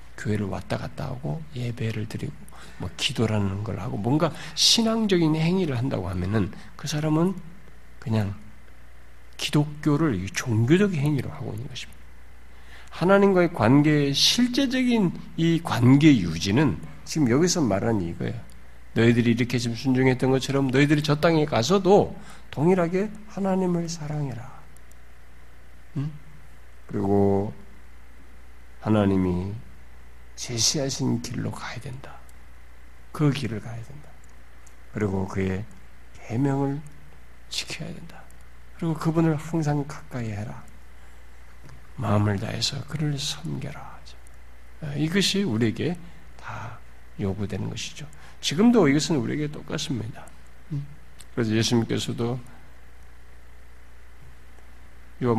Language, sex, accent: Korean, male, native